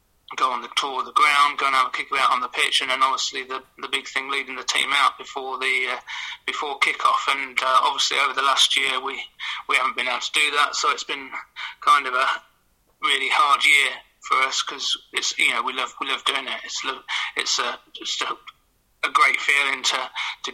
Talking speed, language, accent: 225 wpm, English, British